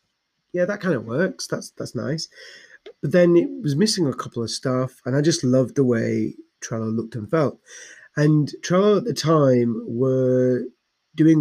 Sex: male